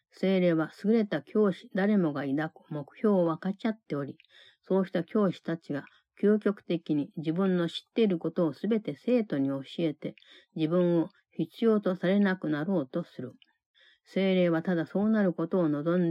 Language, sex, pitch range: Japanese, female, 155-195 Hz